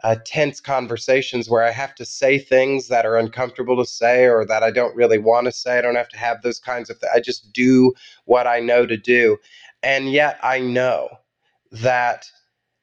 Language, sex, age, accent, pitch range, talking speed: English, male, 30-49, American, 120-135 Hz, 205 wpm